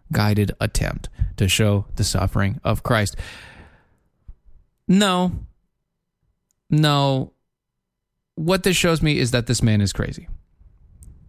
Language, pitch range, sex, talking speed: English, 115-185 Hz, male, 105 wpm